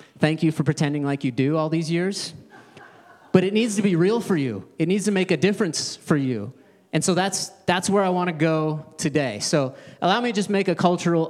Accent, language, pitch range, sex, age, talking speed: American, English, 150-195 Hz, male, 30-49, 235 wpm